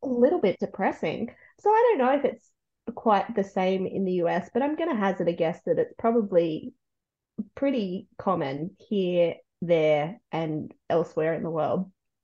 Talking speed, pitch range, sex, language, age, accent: 165 wpm, 175-205 Hz, female, English, 20-39, Australian